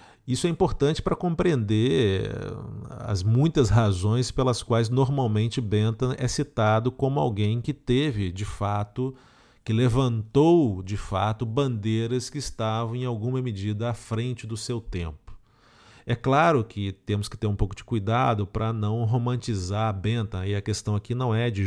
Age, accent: 40-59, Brazilian